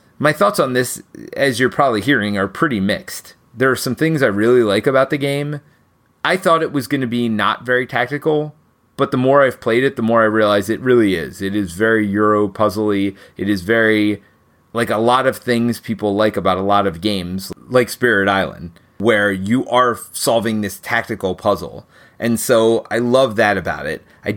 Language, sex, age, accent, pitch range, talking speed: English, male, 30-49, American, 105-130 Hz, 200 wpm